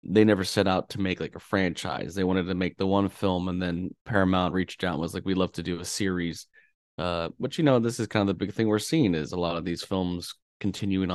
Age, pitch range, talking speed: 30-49, 90-105 Hz, 270 wpm